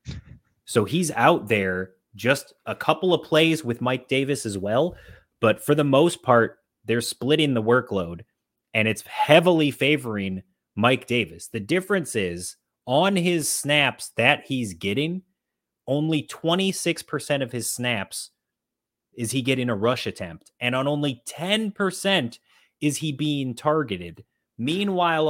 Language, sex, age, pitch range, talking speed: English, male, 30-49, 115-155 Hz, 140 wpm